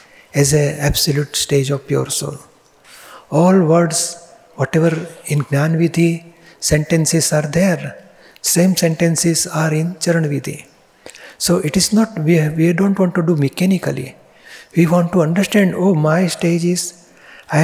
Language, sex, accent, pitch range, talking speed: Gujarati, male, native, 150-175 Hz, 145 wpm